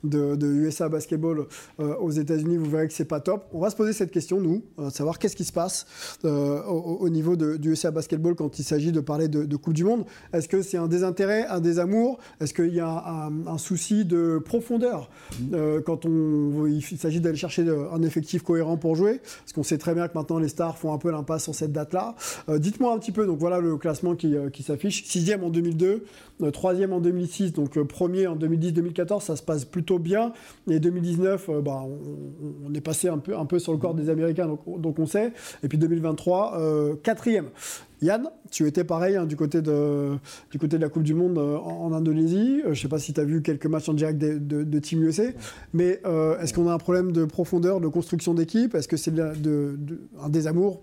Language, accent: French, French